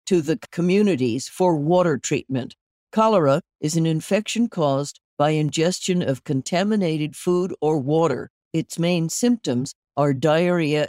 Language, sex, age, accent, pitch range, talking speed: English, female, 60-79, American, 145-185 Hz, 120 wpm